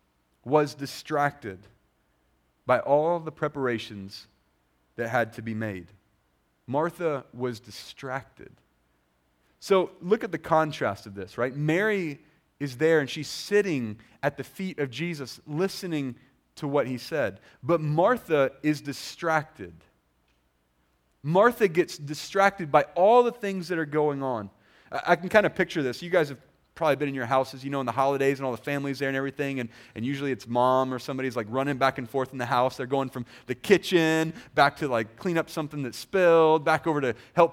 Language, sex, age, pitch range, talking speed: English, male, 30-49, 120-165 Hz, 175 wpm